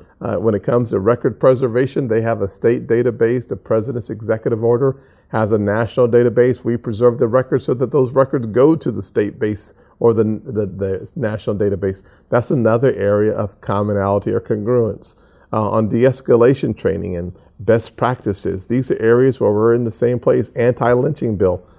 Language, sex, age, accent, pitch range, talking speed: English, male, 40-59, American, 105-120 Hz, 175 wpm